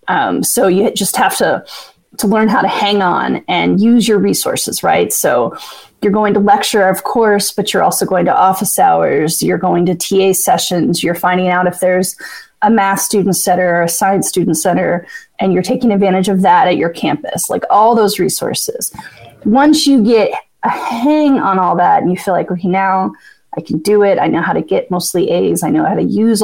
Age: 30-49